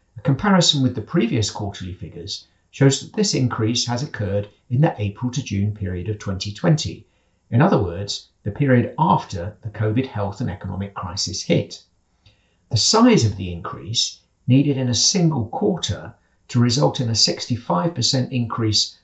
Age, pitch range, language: 50-69, 100-135 Hz, English